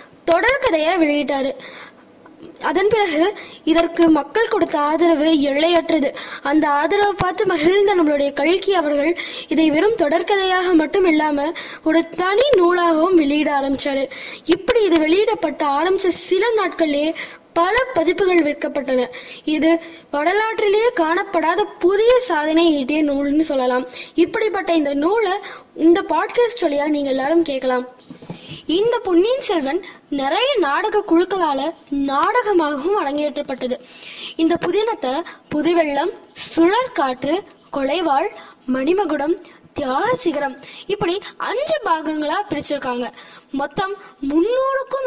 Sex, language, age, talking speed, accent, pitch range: female, Tamil, 20-39, 95 wpm, native, 295-385 Hz